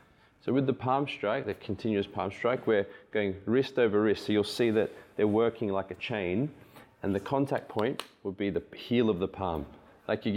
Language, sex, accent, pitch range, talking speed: English, male, Australian, 100-130 Hz, 210 wpm